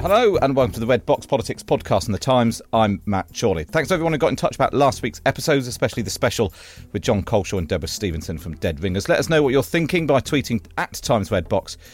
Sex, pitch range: male, 90-120 Hz